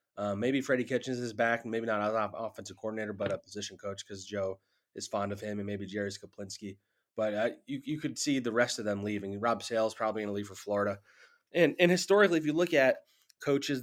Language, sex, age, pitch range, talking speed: English, male, 20-39, 105-125 Hz, 235 wpm